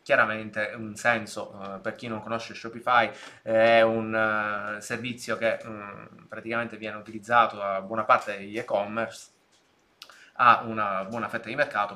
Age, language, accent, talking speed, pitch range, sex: 20-39, Italian, native, 130 wpm, 105-120 Hz, male